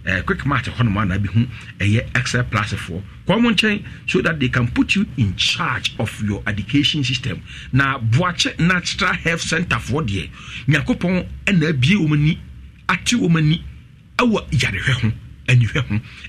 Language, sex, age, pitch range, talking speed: English, male, 60-79, 115-170 Hz, 95 wpm